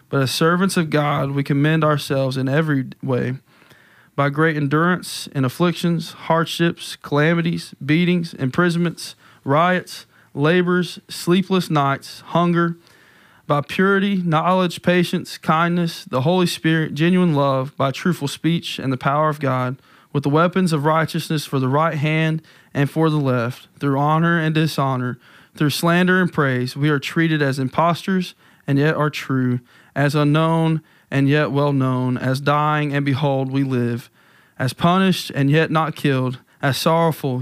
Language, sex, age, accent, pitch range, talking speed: English, male, 20-39, American, 130-165 Hz, 150 wpm